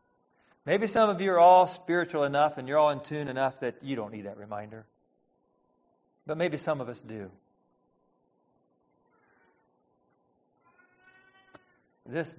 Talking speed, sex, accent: 130 wpm, male, American